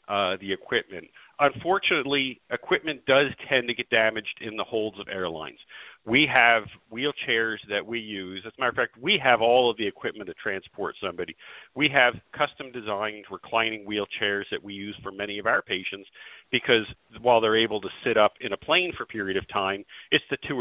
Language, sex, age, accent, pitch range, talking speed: English, male, 50-69, American, 95-115 Hz, 195 wpm